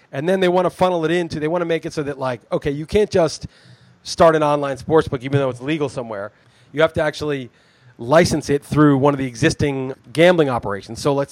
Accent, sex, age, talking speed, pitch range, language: American, male, 30-49, 240 wpm, 130-160 Hz, English